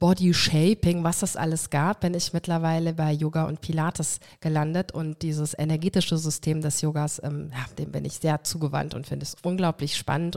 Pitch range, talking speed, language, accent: 160-190 Hz, 180 wpm, German, German